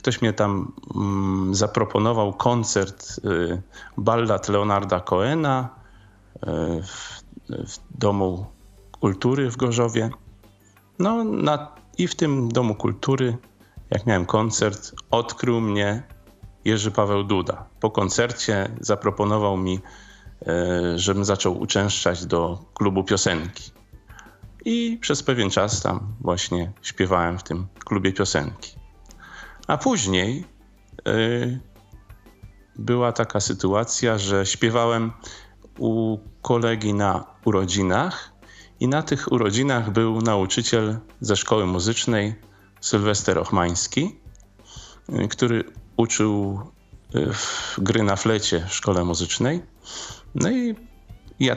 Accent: native